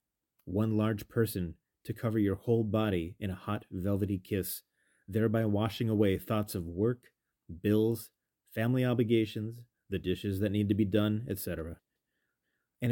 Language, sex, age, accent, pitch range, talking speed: English, male, 30-49, American, 100-125 Hz, 145 wpm